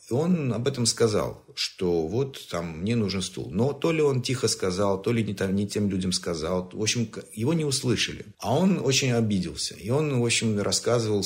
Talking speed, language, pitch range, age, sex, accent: 205 wpm, Russian, 90-115 Hz, 50-69, male, native